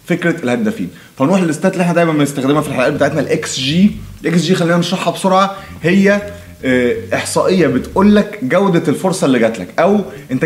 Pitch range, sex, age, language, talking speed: 140-185 Hz, male, 20-39, Arabic, 165 wpm